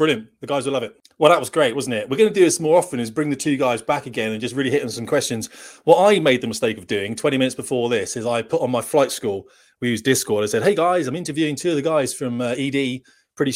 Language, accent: English, British